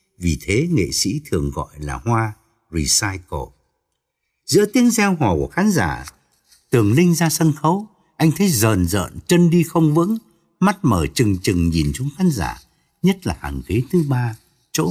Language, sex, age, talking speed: Vietnamese, male, 60-79, 175 wpm